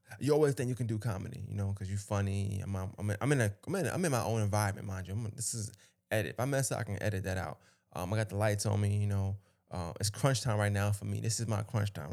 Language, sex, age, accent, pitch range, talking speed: English, male, 20-39, American, 100-115 Hz, 300 wpm